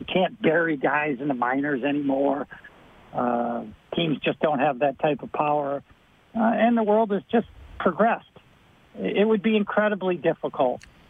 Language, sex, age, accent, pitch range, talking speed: English, male, 60-79, American, 145-190 Hz, 155 wpm